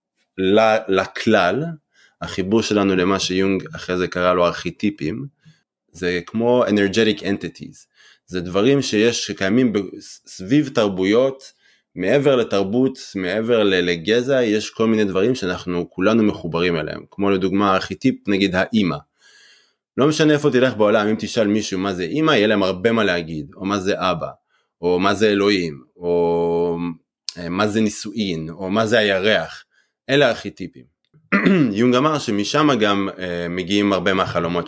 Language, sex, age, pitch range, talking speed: Hebrew, male, 30-49, 90-110 Hz, 135 wpm